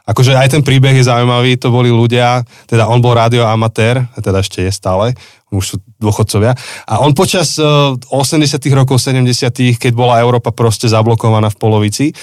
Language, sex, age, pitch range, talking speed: Slovak, male, 20-39, 110-130 Hz, 165 wpm